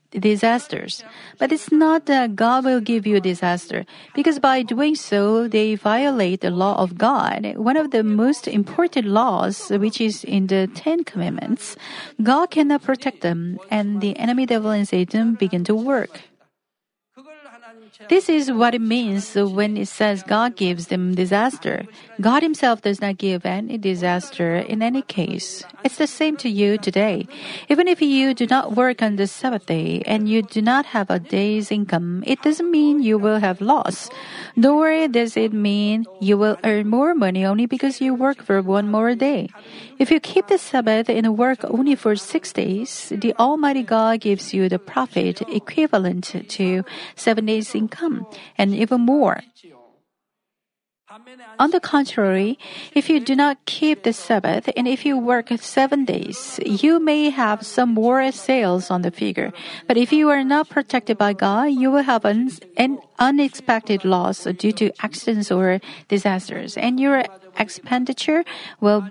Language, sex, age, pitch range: Korean, female, 40-59, 205-270 Hz